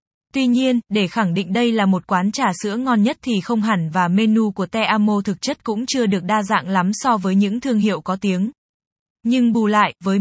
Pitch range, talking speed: 195-235 Hz, 235 wpm